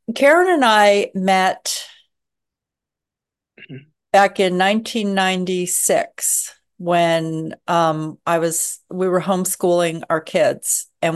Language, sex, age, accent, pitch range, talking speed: English, female, 40-59, American, 160-185 Hz, 90 wpm